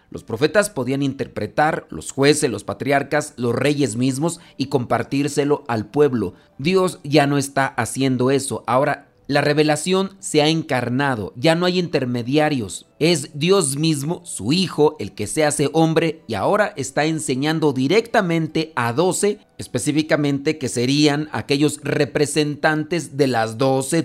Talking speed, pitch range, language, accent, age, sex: 140 wpm, 130-160 Hz, Spanish, Mexican, 40-59, male